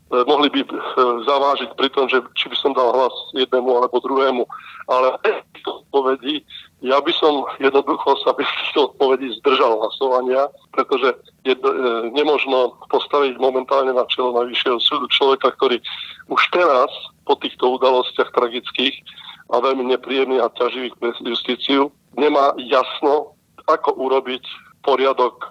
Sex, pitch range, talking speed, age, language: male, 125-140 Hz, 130 wpm, 40-59, Slovak